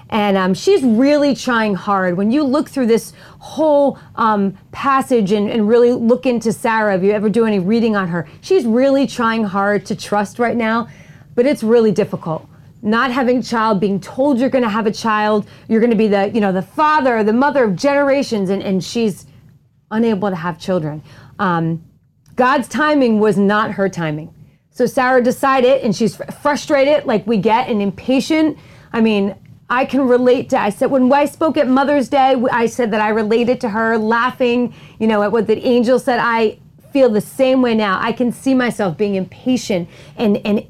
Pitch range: 200-260 Hz